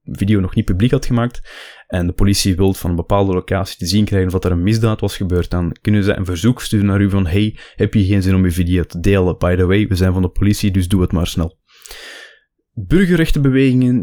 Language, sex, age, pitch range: Dutch, male, 20-39, 95-110 Hz